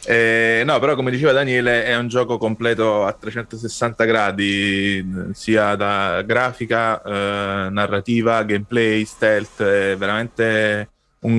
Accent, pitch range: native, 100-115 Hz